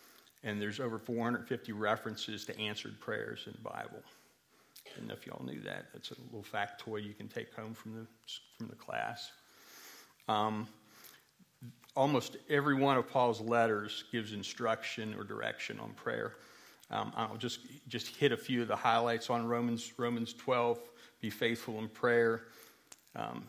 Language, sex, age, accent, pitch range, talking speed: English, male, 40-59, American, 110-125 Hz, 165 wpm